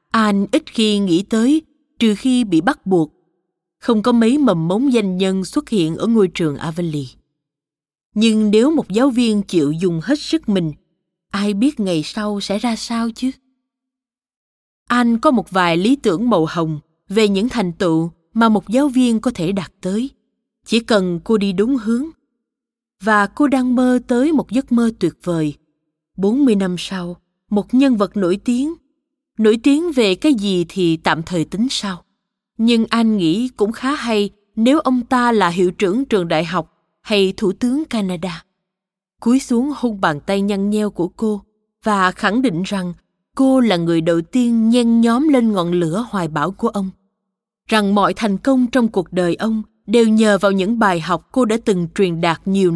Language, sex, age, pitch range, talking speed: Vietnamese, female, 20-39, 180-245 Hz, 185 wpm